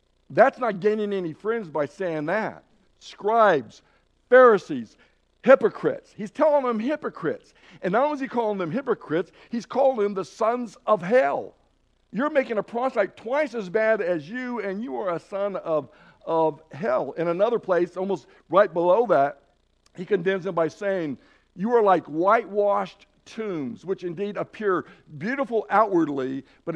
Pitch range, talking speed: 170-225 Hz, 155 wpm